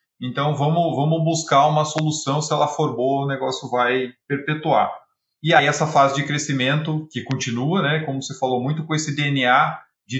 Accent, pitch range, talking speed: Brazilian, 125-165 Hz, 180 wpm